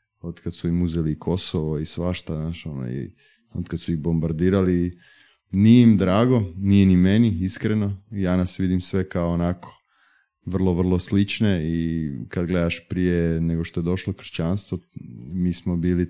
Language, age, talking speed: Croatian, 20-39, 170 wpm